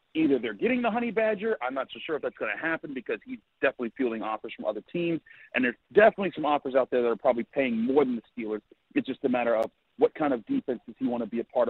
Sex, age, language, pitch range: male, 40-59, English, 150-215 Hz